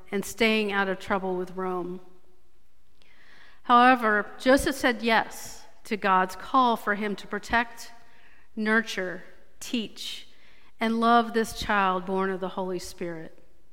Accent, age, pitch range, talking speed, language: American, 50-69, 185-220 Hz, 125 wpm, English